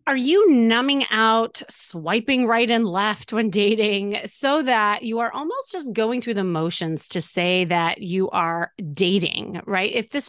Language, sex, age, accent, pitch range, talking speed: English, female, 30-49, American, 185-260 Hz, 170 wpm